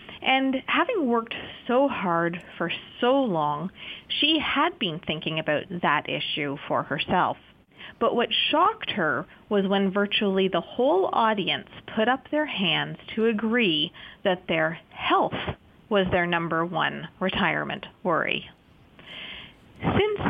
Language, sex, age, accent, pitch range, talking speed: English, female, 40-59, American, 170-245 Hz, 125 wpm